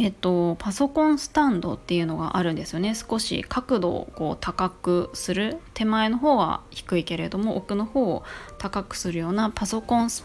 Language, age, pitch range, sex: Japanese, 20-39, 175-225 Hz, female